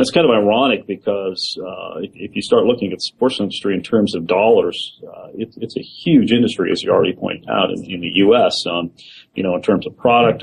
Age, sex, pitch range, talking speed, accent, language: 40-59, male, 95-135 Hz, 230 wpm, American, English